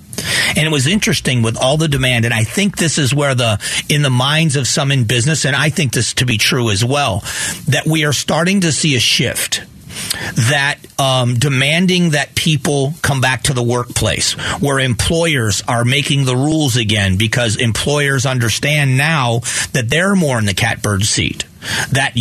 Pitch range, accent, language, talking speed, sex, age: 120-150 Hz, American, English, 185 wpm, male, 40-59